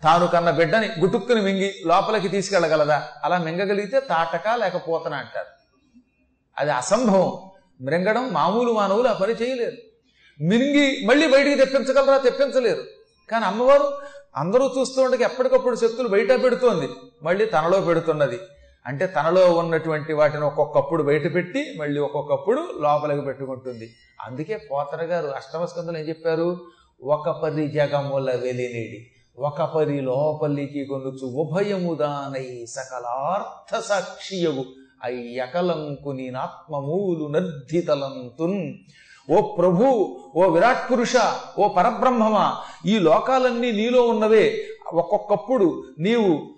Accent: native